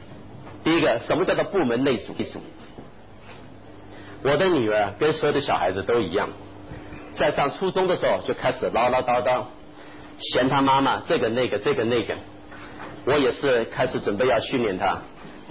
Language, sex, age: Chinese, male, 50-69